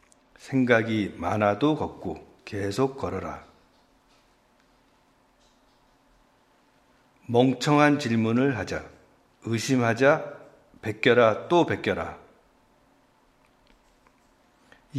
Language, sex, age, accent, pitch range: Korean, male, 50-69, native, 105-135 Hz